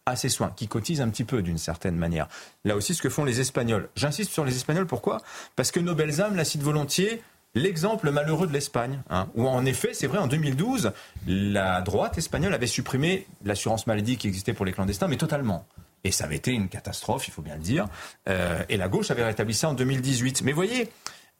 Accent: French